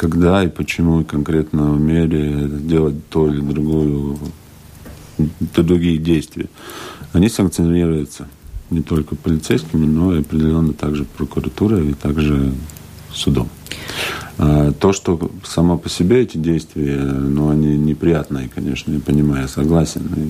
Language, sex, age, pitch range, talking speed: Russian, male, 40-59, 75-80 Hz, 125 wpm